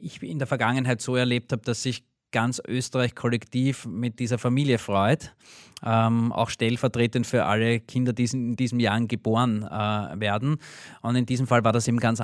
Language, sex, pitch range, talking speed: German, male, 110-125 Hz, 180 wpm